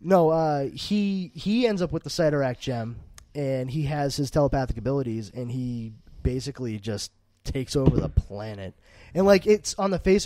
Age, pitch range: 20-39, 120-155 Hz